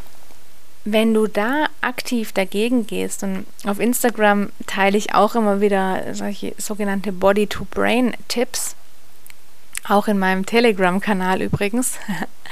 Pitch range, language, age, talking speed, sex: 195-230 Hz, German, 30-49, 105 wpm, female